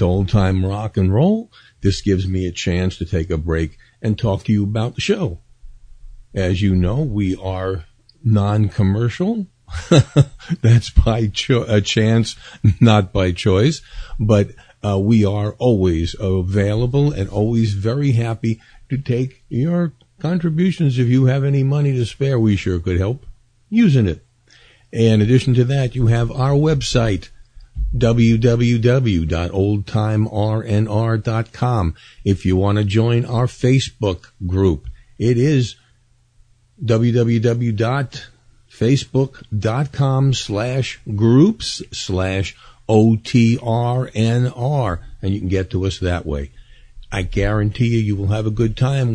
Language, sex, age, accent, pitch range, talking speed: English, male, 50-69, American, 95-125 Hz, 125 wpm